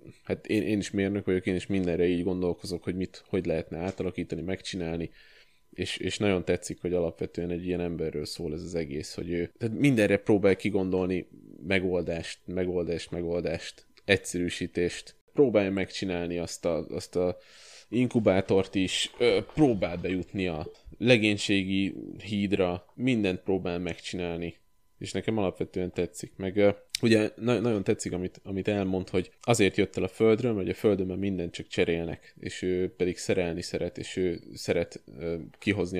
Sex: male